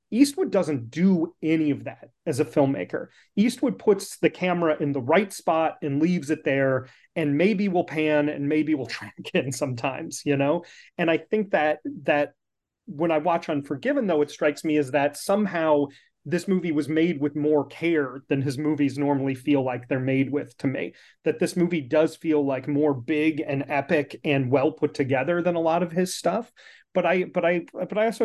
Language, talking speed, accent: English, 200 wpm, American